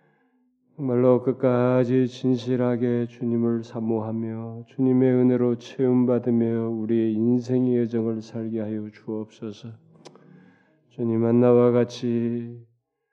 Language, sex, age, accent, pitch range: Korean, male, 20-39, native, 115-125 Hz